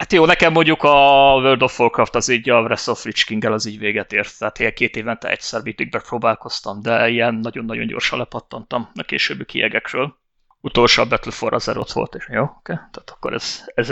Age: 30-49